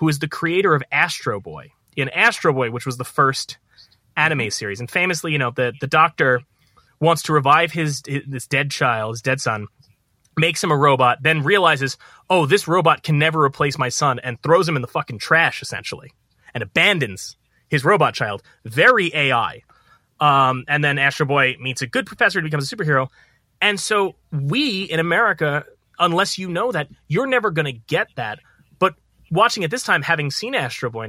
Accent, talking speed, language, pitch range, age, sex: American, 190 wpm, English, 130-170 Hz, 30-49, male